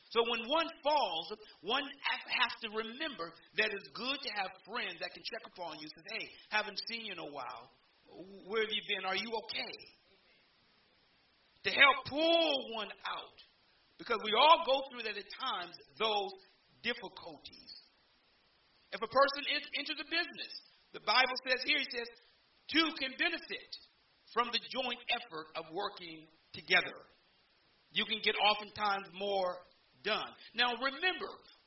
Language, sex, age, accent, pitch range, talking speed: English, male, 40-59, American, 205-285 Hz, 155 wpm